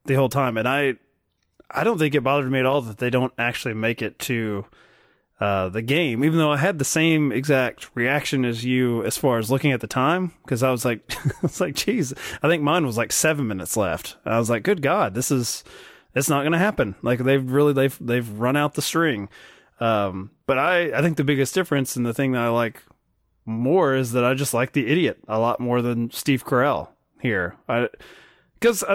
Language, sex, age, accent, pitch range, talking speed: English, male, 20-39, American, 120-155 Hz, 220 wpm